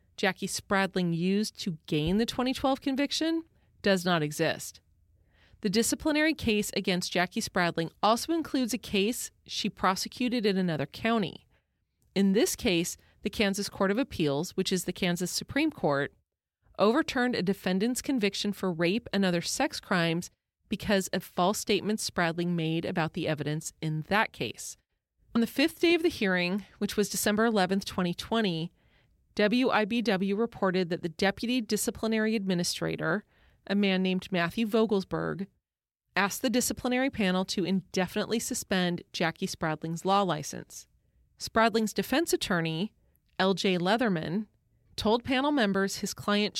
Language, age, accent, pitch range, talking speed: English, 30-49, American, 180-225 Hz, 140 wpm